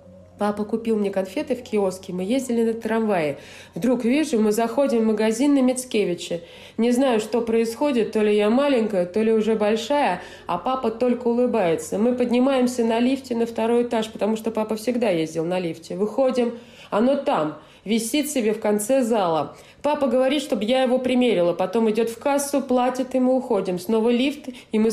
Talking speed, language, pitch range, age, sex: 180 wpm, Russian, 180-250 Hz, 20-39, female